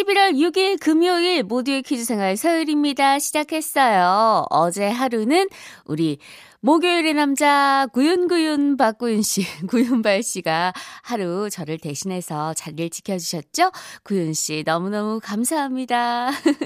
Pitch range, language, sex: 190-305 Hz, Korean, female